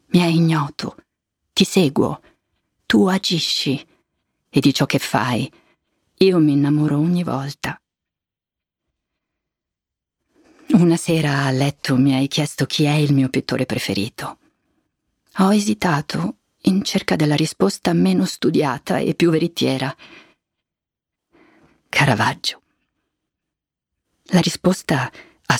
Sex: female